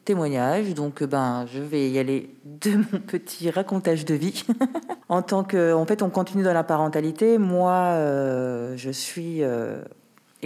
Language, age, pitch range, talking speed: French, 40-59, 135-165 Hz, 160 wpm